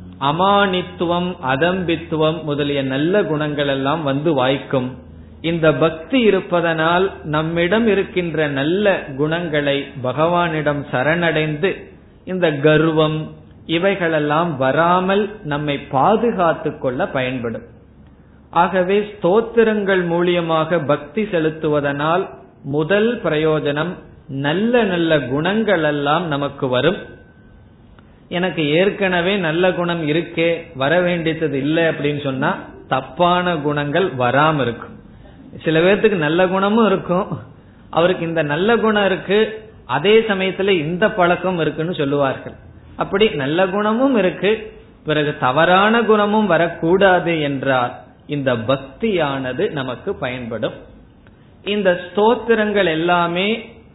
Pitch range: 145-190 Hz